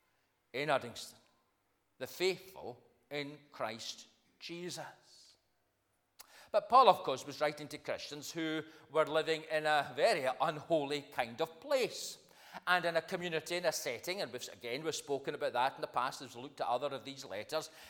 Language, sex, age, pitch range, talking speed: English, male, 40-59, 135-185 Hz, 165 wpm